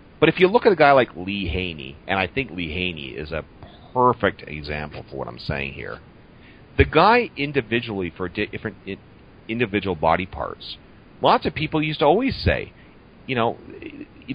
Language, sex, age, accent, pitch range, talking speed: English, male, 40-59, American, 85-110 Hz, 185 wpm